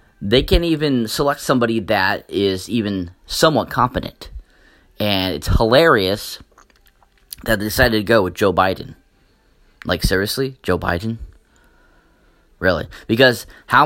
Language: English